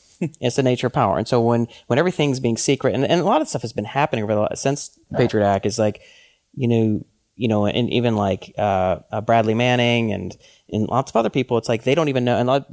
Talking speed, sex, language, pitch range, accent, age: 250 wpm, male, English, 105-125 Hz, American, 30-49